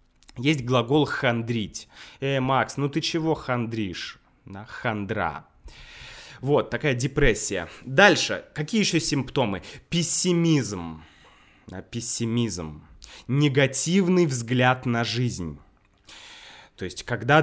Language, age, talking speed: Russian, 20-39, 90 wpm